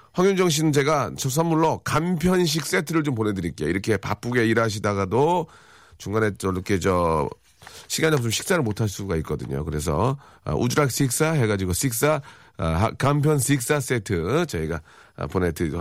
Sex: male